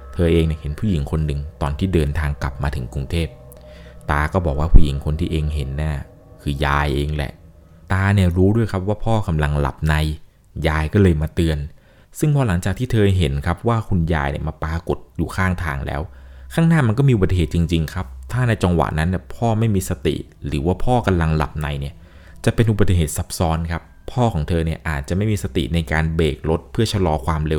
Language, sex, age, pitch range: Thai, male, 20-39, 75-95 Hz